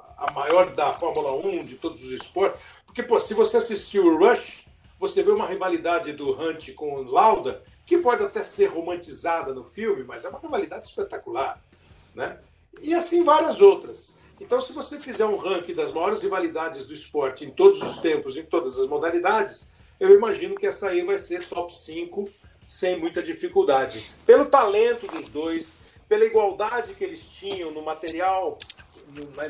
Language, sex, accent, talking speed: Portuguese, male, Brazilian, 175 wpm